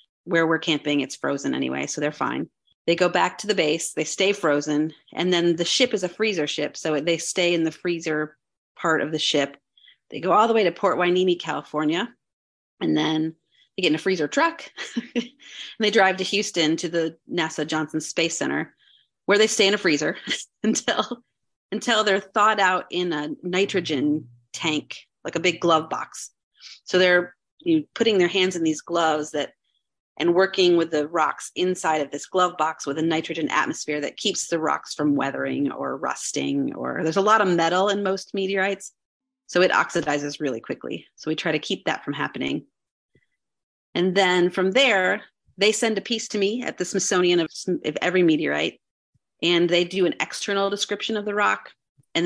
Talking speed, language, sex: 190 wpm, English, female